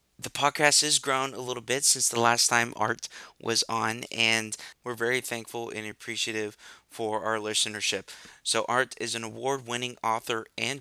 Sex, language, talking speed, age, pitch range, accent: male, English, 165 wpm, 20-39, 110-125 Hz, American